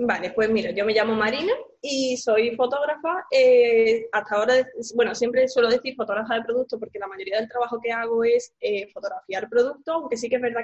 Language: Spanish